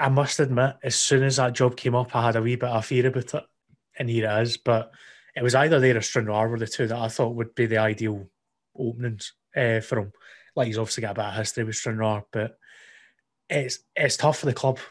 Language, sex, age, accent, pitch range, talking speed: English, male, 20-39, British, 110-125 Hz, 245 wpm